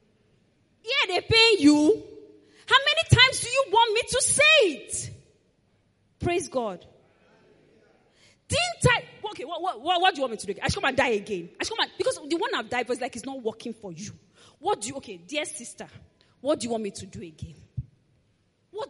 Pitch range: 215-345 Hz